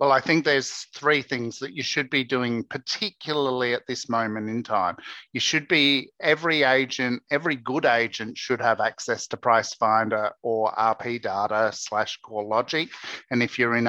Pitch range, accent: 115-145 Hz, Australian